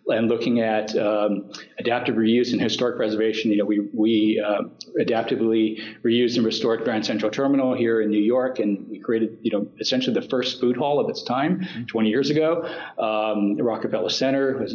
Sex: male